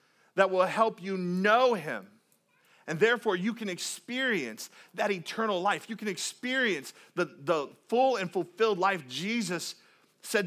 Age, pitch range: 40-59, 145-220 Hz